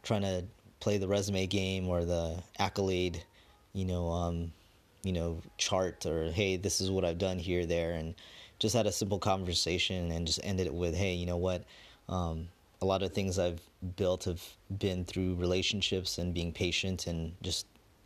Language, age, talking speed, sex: English, 30-49, 190 wpm, male